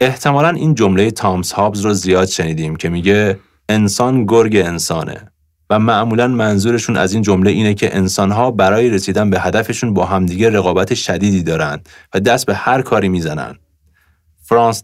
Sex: male